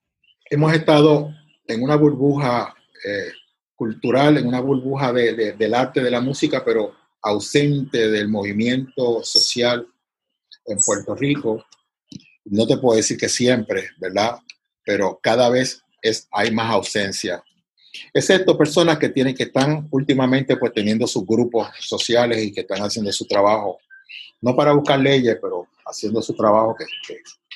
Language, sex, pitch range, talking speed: Spanish, male, 110-140 Hz, 150 wpm